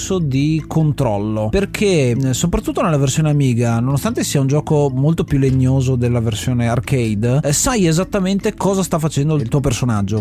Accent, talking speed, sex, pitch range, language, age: native, 145 wpm, male, 125-160 Hz, Italian, 30-49